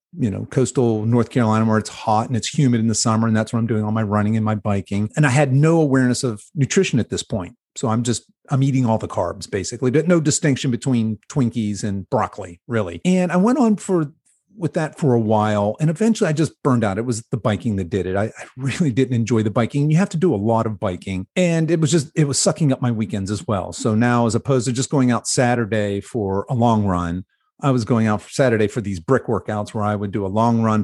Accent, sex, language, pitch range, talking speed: American, male, English, 110-135 Hz, 255 wpm